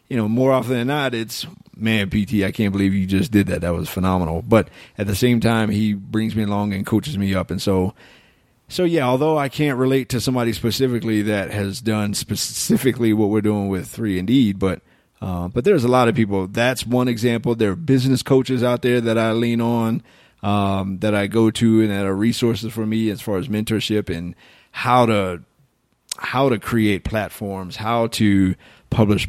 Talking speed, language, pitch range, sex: 205 wpm, English, 100-125 Hz, male